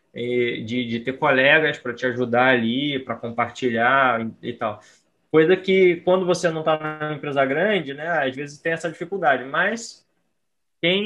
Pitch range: 130-155 Hz